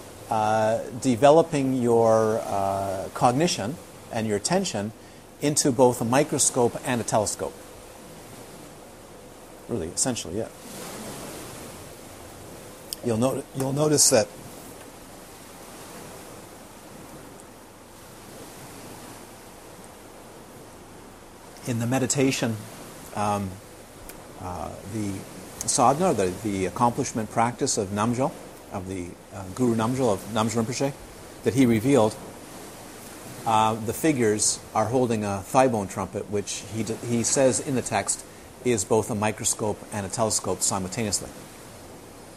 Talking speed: 100 wpm